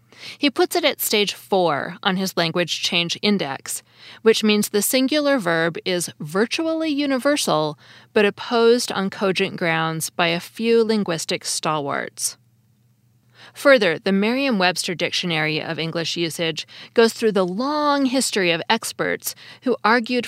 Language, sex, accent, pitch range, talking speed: English, female, American, 170-230 Hz, 135 wpm